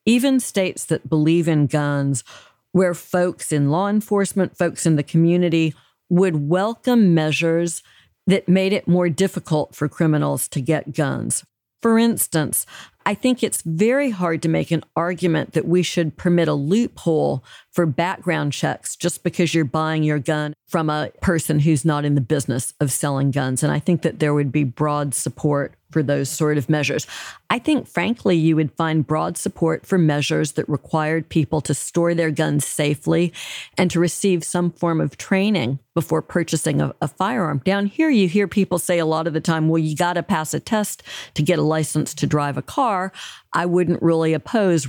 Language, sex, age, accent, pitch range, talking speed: English, female, 50-69, American, 150-180 Hz, 185 wpm